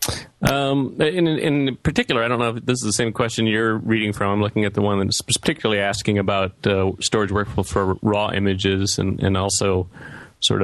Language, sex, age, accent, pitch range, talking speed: English, male, 30-49, American, 100-115 Hz, 195 wpm